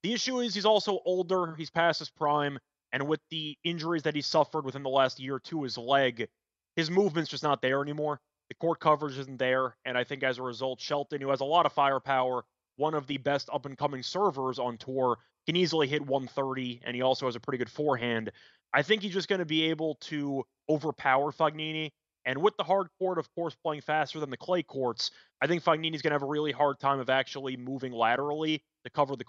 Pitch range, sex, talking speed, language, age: 135-170 Hz, male, 225 wpm, English, 20-39